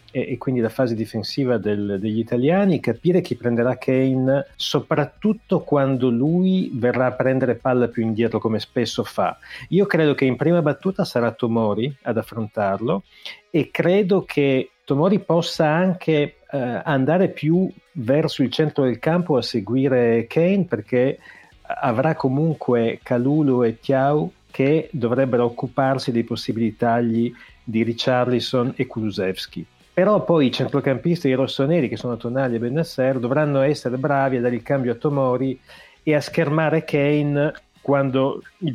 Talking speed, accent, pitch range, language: 145 wpm, native, 120-150 Hz, Italian